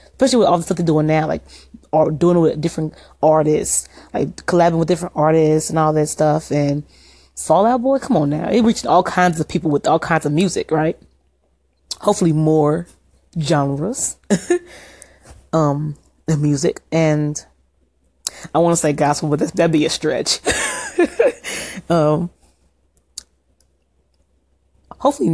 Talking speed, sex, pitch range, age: 140 wpm, female, 145-185 Hz, 30-49